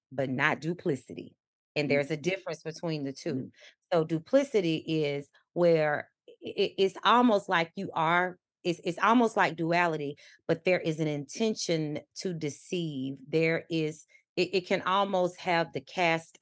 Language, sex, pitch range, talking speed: English, female, 140-175 Hz, 145 wpm